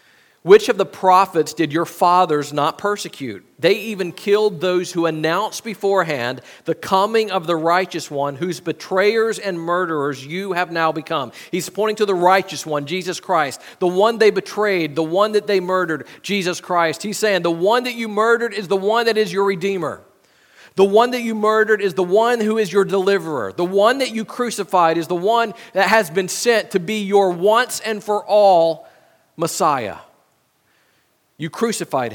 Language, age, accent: English, 40-59, American